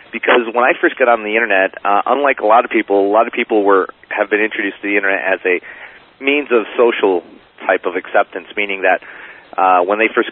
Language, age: English, 40-59